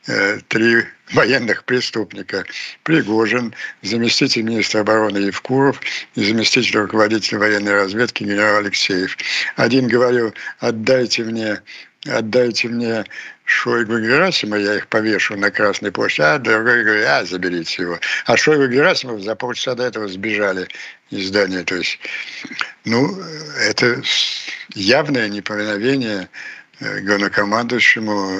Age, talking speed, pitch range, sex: 60-79, 110 wpm, 105-130 Hz, male